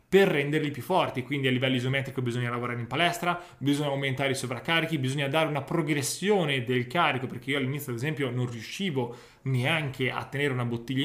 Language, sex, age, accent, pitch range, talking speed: Italian, male, 20-39, native, 130-165 Hz, 185 wpm